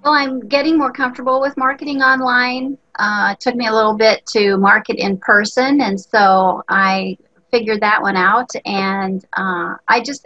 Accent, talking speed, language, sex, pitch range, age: American, 175 wpm, English, female, 190-235 Hz, 30-49